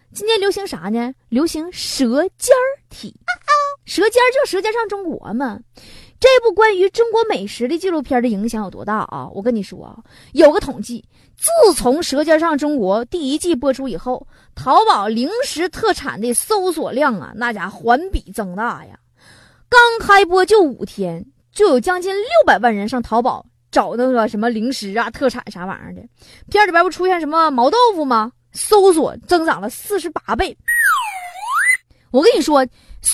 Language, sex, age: Chinese, female, 20-39